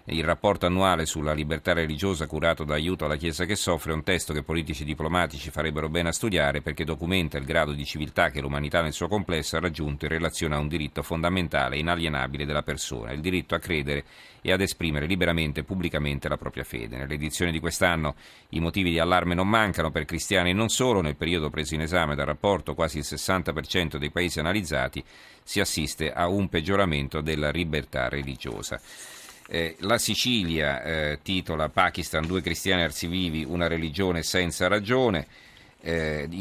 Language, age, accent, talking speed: Italian, 40-59, native, 180 wpm